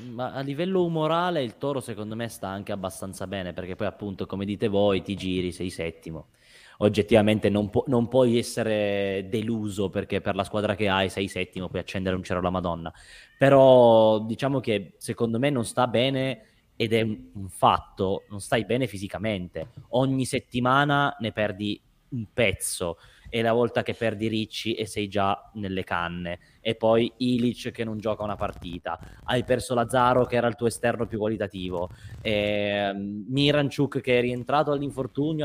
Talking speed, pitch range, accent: 170 wpm, 100-125 Hz, native